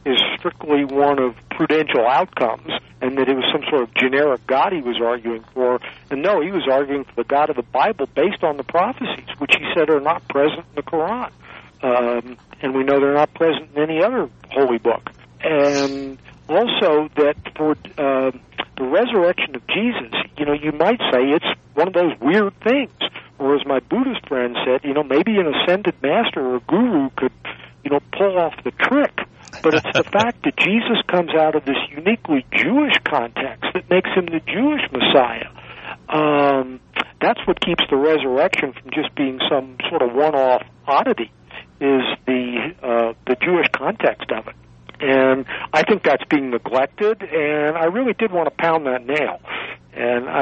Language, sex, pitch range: English, male, 130-165 Hz